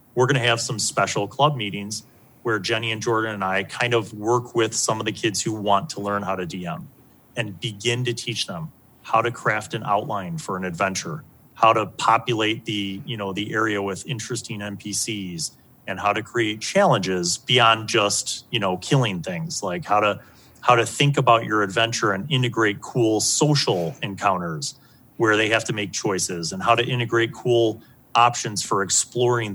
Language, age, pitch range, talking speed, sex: English, 30-49, 105-140 Hz, 185 wpm, male